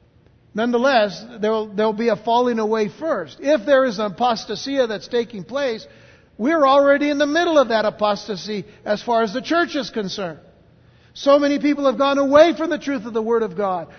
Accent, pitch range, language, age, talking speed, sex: American, 205-270 Hz, English, 60-79, 200 wpm, male